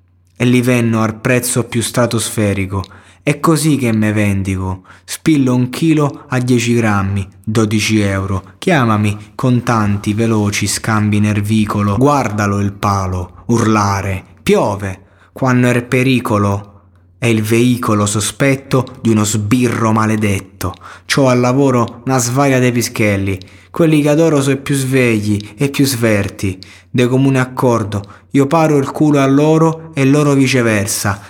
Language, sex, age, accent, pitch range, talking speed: Italian, male, 20-39, native, 105-140 Hz, 135 wpm